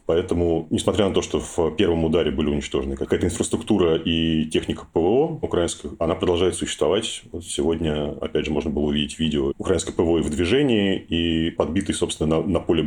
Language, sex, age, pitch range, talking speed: Russian, male, 30-49, 75-90 Hz, 175 wpm